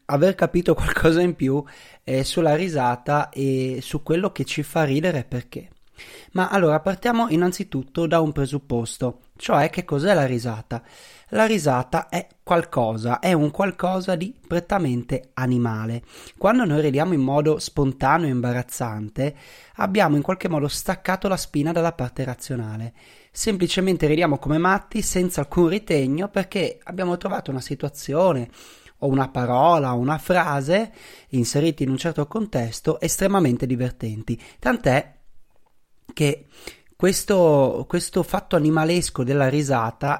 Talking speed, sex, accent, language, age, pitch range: 130 wpm, male, native, Italian, 30-49, 130-180 Hz